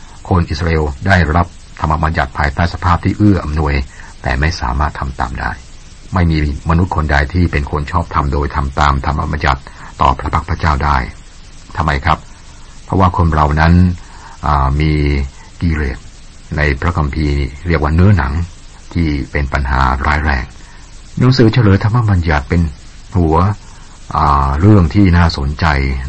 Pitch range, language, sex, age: 70-85 Hz, Thai, male, 60-79